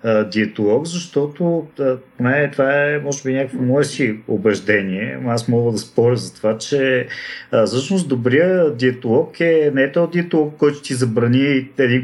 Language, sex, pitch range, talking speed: Bulgarian, male, 115-145 Hz, 160 wpm